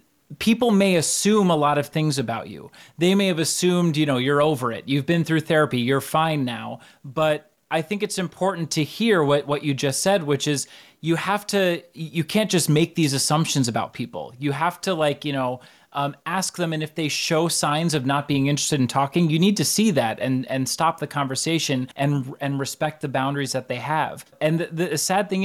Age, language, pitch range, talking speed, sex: 30-49, English, 140-175 Hz, 220 wpm, male